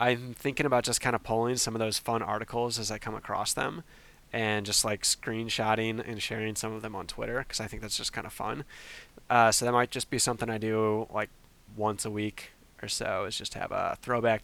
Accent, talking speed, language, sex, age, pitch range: American, 235 wpm, English, male, 20-39, 105-120 Hz